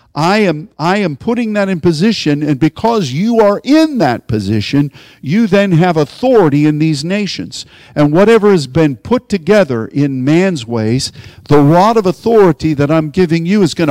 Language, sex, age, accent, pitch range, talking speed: English, male, 50-69, American, 135-185 Hz, 175 wpm